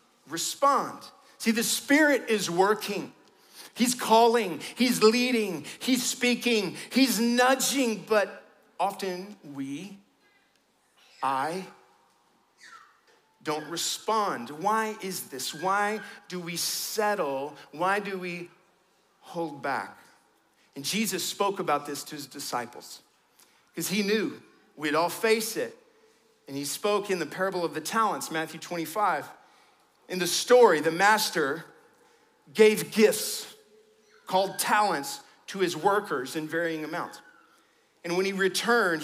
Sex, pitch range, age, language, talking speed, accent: male, 170-225 Hz, 50-69, English, 120 wpm, American